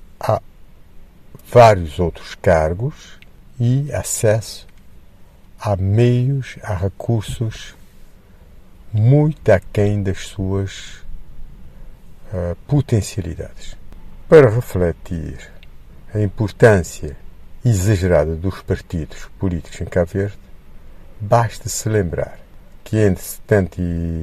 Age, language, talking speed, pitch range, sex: 60-79, Portuguese, 75 wpm, 80-110 Hz, male